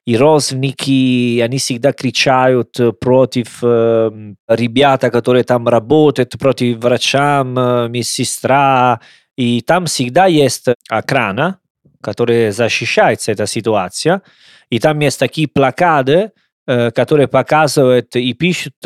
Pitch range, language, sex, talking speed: 120-150 Hz, Russian, male, 110 wpm